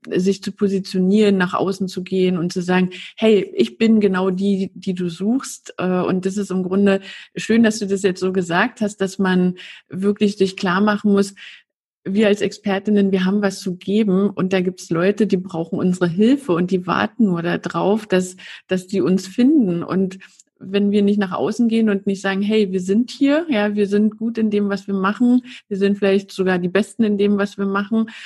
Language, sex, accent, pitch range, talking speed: German, female, German, 190-220 Hz, 210 wpm